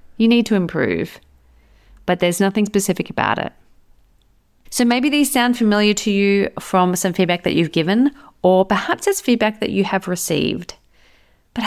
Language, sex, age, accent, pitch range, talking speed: English, female, 40-59, Australian, 175-235 Hz, 165 wpm